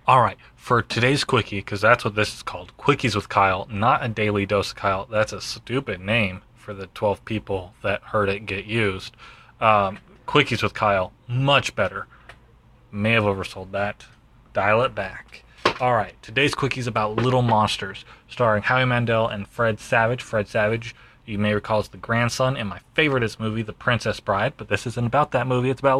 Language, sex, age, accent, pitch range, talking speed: English, male, 20-39, American, 105-130 Hz, 185 wpm